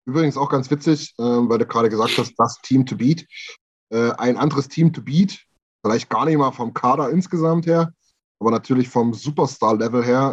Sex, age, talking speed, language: male, 20-39, 190 wpm, German